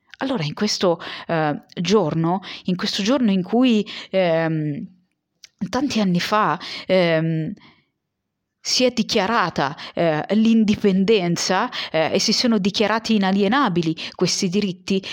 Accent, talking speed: native, 105 wpm